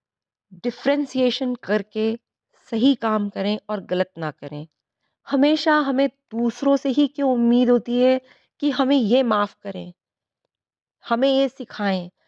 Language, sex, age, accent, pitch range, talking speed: Hindi, female, 30-49, native, 205-270 Hz, 125 wpm